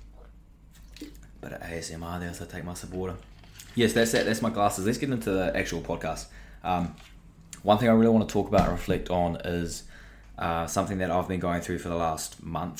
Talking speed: 215 wpm